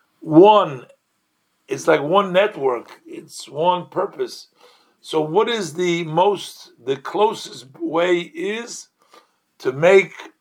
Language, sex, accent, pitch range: English, male, American, 160-255 Hz